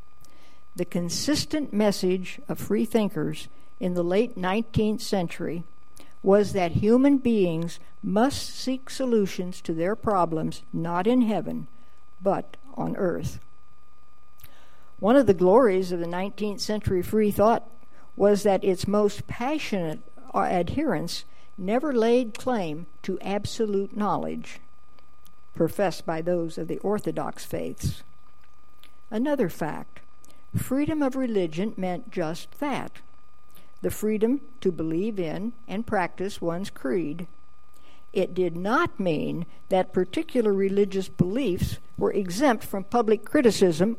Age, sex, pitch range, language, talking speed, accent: 60-79, female, 165-220 Hz, English, 115 wpm, American